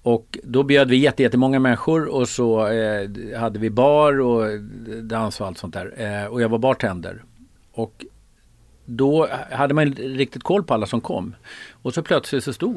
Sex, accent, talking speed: male, native, 190 wpm